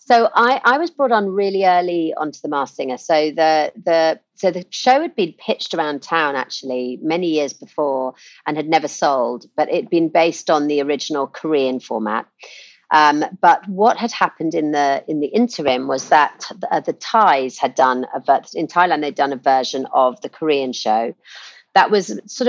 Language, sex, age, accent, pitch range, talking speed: English, female, 40-59, British, 140-175 Hz, 190 wpm